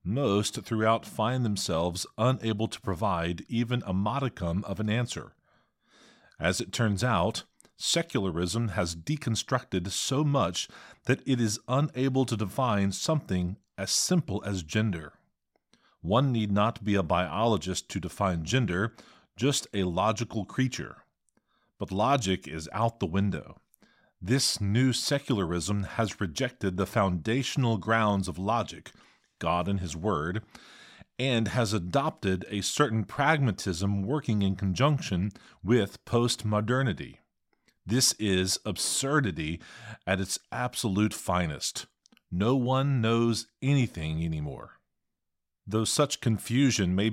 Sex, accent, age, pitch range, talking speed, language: male, American, 40-59, 95-125 Hz, 120 wpm, English